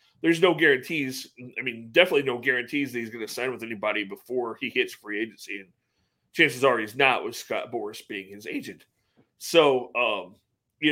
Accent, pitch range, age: American, 125-200 Hz, 30-49